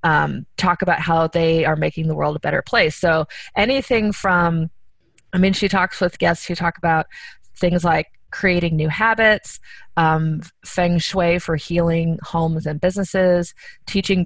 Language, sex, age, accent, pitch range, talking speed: English, female, 30-49, American, 160-190 Hz, 160 wpm